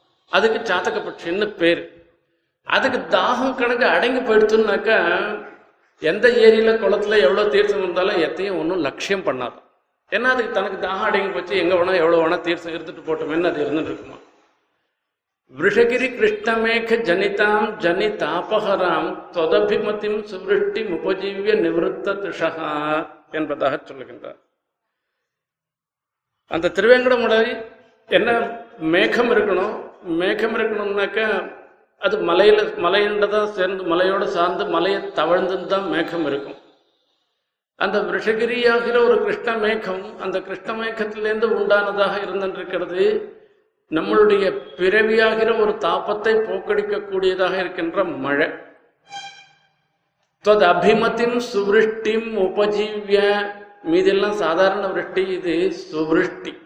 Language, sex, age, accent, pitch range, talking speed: Tamil, male, 50-69, native, 185-230 Hz, 90 wpm